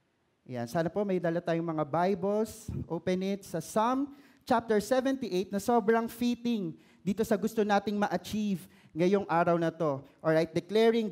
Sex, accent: male, native